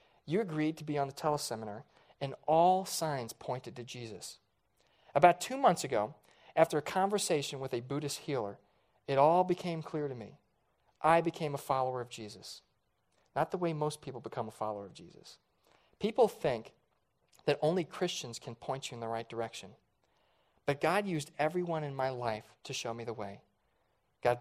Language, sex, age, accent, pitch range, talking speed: English, male, 40-59, American, 120-160 Hz, 175 wpm